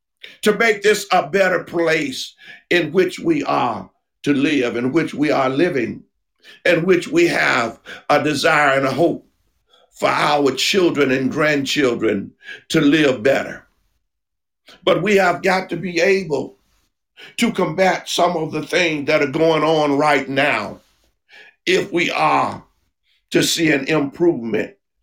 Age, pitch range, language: 50-69, 155-225 Hz, English